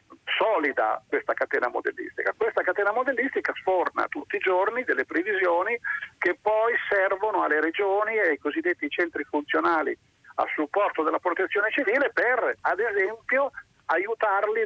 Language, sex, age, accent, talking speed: Italian, male, 50-69, native, 130 wpm